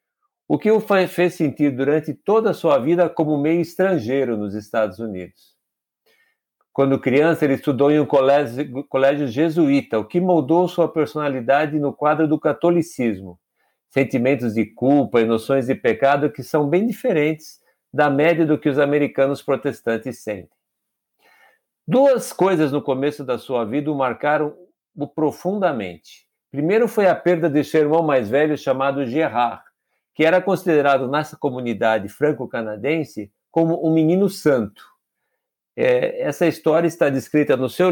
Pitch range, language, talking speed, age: 135-175 Hz, Portuguese, 145 wpm, 50-69